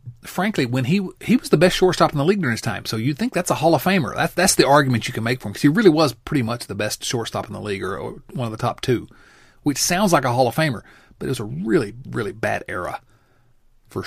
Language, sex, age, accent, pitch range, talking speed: English, male, 40-59, American, 110-140 Hz, 280 wpm